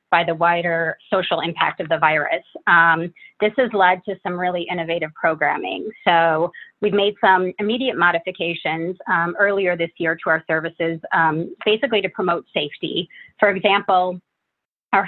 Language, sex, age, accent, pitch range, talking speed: English, female, 30-49, American, 170-205 Hz, 150 wpm